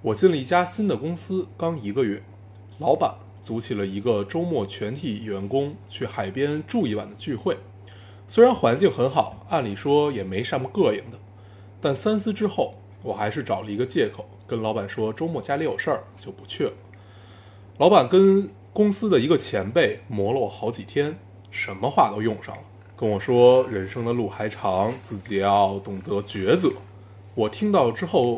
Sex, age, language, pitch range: male, 20-39, Chinese, 100-140 Hz